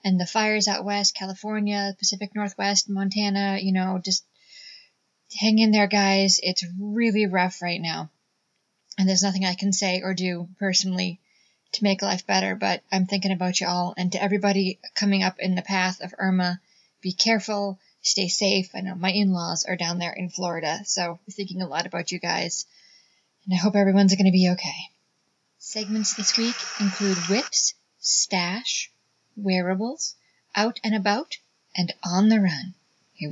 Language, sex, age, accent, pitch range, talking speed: English, female, 20-39, American, 185-215 Hz, 170 wpm